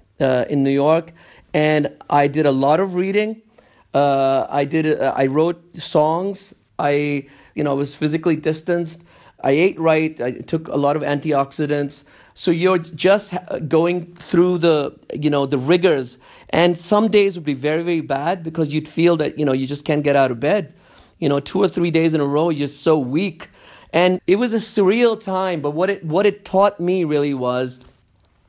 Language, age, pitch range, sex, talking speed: English, 50-69, 145-180 Hz, male, 195 wpm